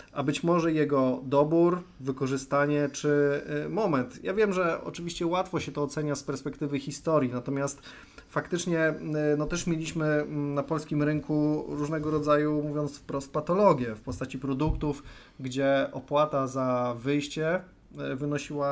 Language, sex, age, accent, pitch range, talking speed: Polish, male, 30-49, native, 140-160 Hz, 130 wpm